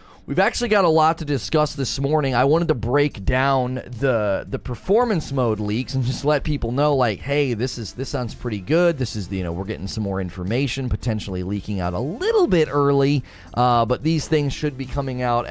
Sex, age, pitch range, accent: male, 30-49, 115-145 Hz, American